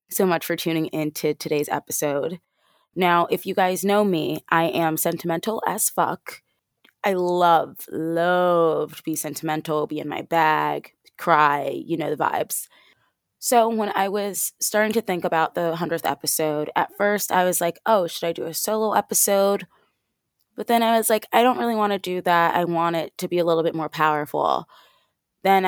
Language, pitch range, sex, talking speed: English, 160-200 Hz, female, 185 wpm